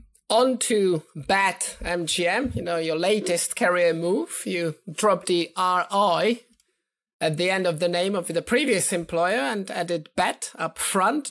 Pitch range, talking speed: 175-220 Hz, 150 wpm